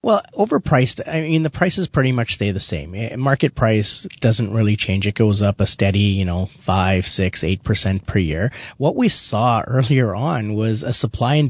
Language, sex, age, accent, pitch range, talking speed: English, male, 30-49, American, 105-125 Hz, 200 wpm